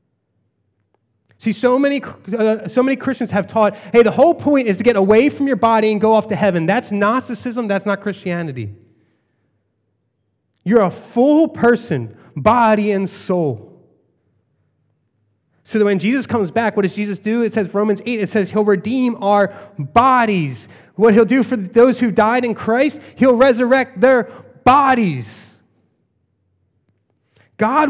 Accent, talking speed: American, 150 wpm